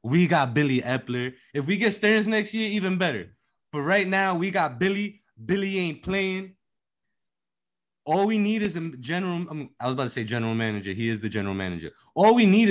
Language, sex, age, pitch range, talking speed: English, male, 20-39, 105-165 Hz, 200 wpm